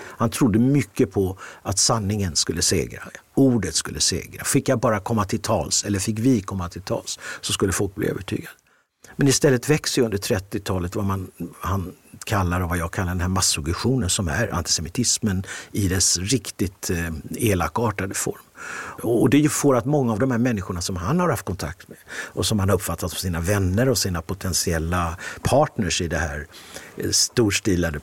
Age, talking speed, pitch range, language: 50-69, 180 wpm, 95-130 Hz, Swedish